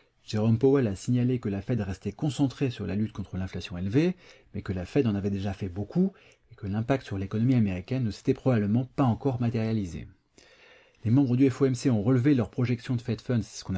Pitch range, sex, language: 100-130 Hz, male, French